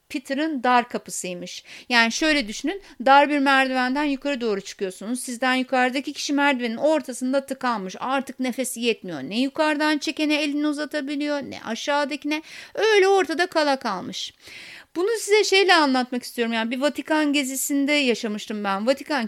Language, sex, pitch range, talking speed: Turkish, female, 225-295 Hz, 135 wpm